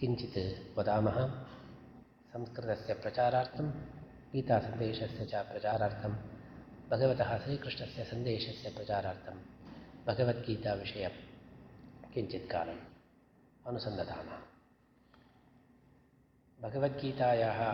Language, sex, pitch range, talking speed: Hindi, male, 110-130 Hz, 45 wpm